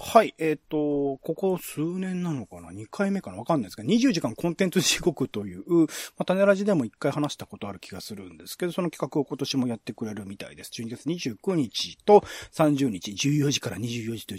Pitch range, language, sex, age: 115-190 Hz, Japanese, male, 40-59